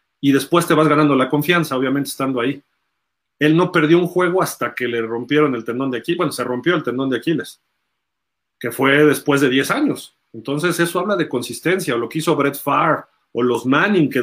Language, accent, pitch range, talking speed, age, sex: Spanish, Mexican, 130-170 Hz, 215 wpm, 40-59, male